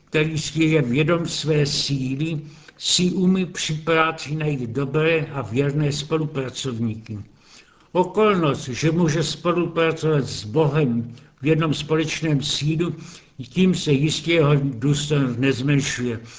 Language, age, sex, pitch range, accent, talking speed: Czech, 70-89, male, 140-160 Hz, native, 110 wpm